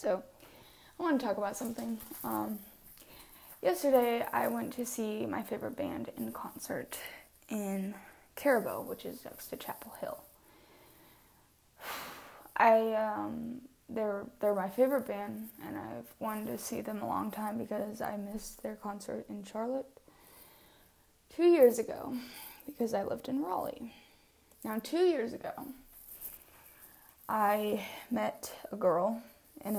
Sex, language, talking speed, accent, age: female, English, 135 wpm, American, 10-29